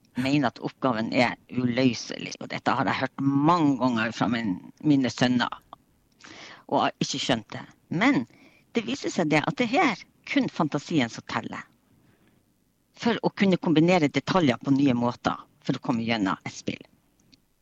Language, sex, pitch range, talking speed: English, female, 135-200 Hz, 155 wpm